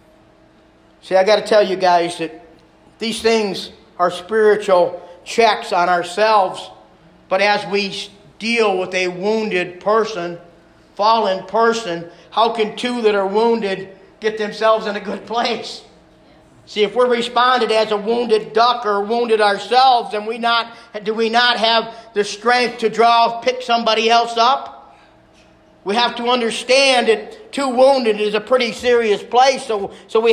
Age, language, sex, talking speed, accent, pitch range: 50-69, English, male, 155 wpm, American, 210-260 Hz